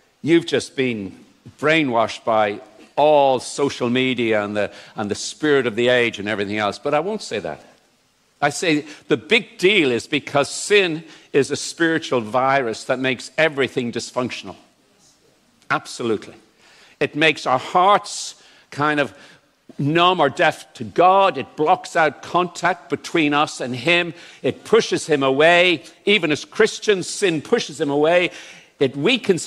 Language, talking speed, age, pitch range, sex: English, 145 wpm, 60-79, 130-175 Hz, male